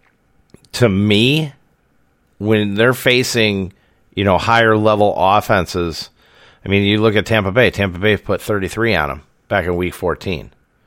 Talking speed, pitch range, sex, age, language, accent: 145 wpm, 85-110 Hz, male, 40-59, English, American